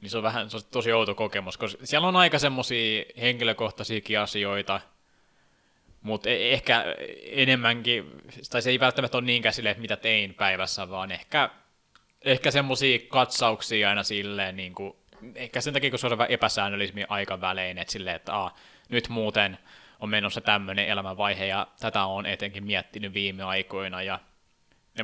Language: Finnish